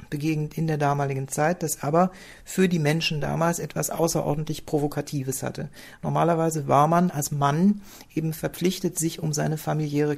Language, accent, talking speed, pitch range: German, German, 155 wpm, 145-170 Hz